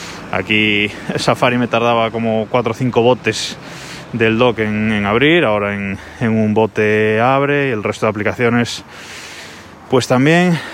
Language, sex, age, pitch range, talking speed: Spanish, male, 20-39, 100-120 Hz, 150 wpm